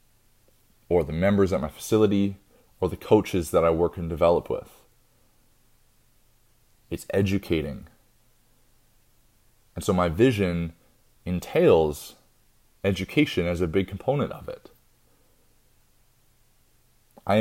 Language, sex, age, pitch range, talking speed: English, male, 30-49, 85-115 Hz, 105 wpm